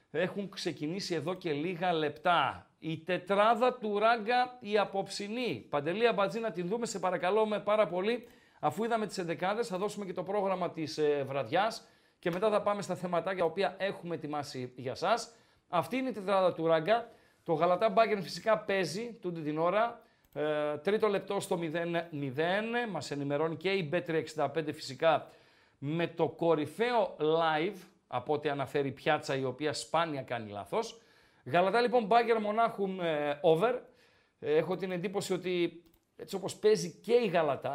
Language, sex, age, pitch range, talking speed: Greek, male, 40-59, 155-205 Hz, 155 wpm